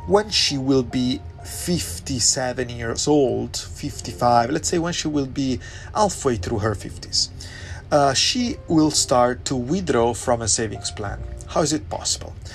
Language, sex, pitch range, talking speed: Italian, male, 95-140 Hz, 155 wpm